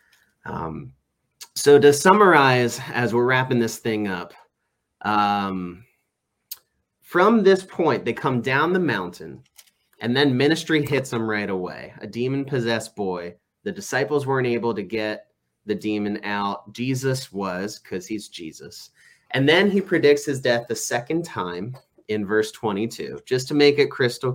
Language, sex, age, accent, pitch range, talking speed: English, male, 30-49, American, 100-135 Hz, 150 wpm